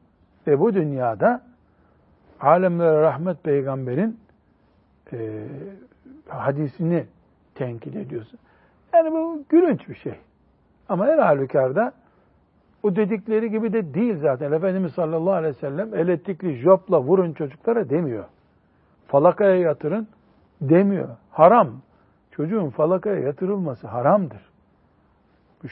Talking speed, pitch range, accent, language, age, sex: 100 wpm, 130-195 Hz, native, Turkish, 60-79, male